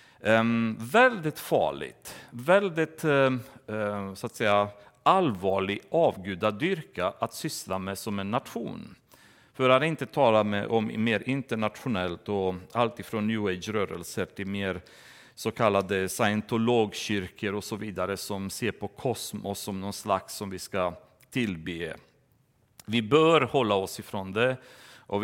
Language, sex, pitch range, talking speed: Swedish, male, 100-135 Hz, 125 wpm